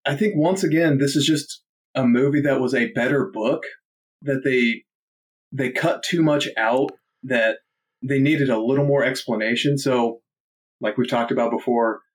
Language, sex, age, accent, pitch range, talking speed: English, male, 30-49, American, 120-145 Hz, 170 wpm